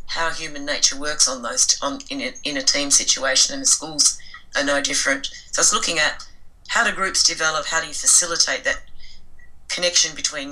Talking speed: 185 wpm